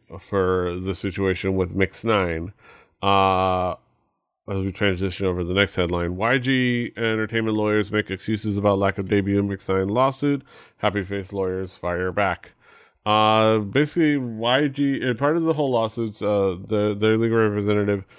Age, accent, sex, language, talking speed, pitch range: 30-49, American, male, English, 150 wpm, 95-110 Hz